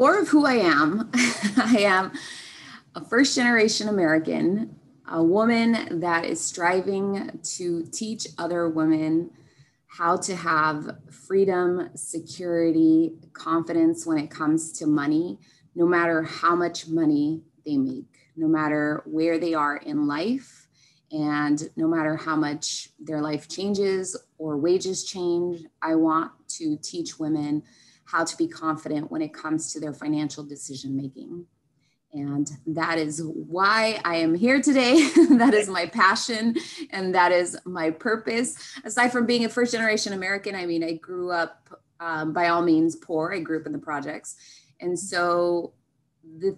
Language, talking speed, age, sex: English, 145 wpm, 20-39, female